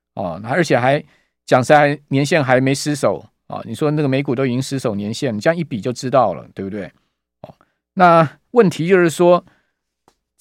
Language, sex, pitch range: Chinese, male, 125-165 Hz